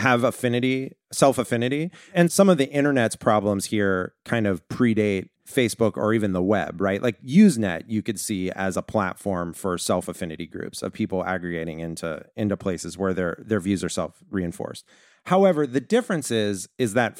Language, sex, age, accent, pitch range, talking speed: English, male, 30-49, American, 100-130 Hz, 170 wpm